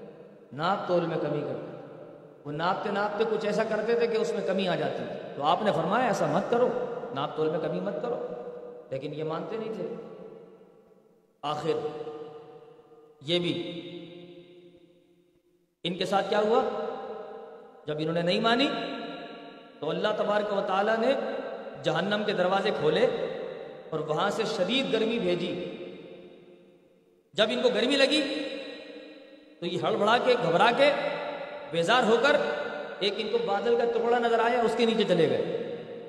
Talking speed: 150 wpm